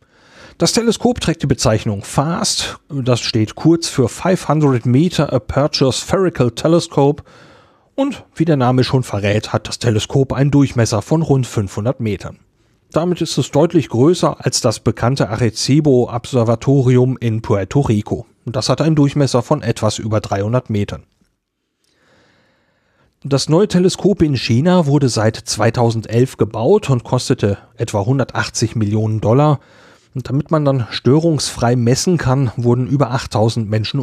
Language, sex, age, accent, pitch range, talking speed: German, male, 40-59, German, 110-145 Hz, 140 wpm